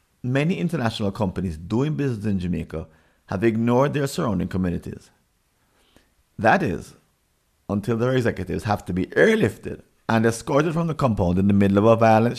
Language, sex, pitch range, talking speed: English, male, 90-130 Hz, 155 wpm